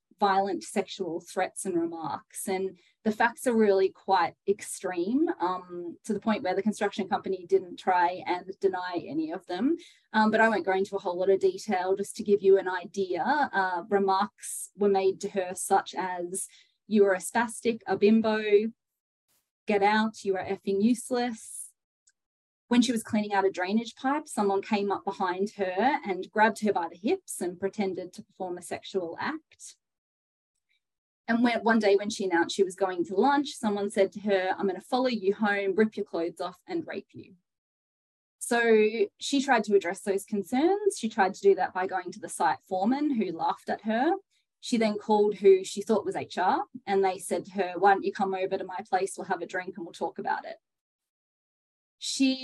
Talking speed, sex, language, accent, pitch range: 195 wpm, female, English, Australian, 190-225 Hz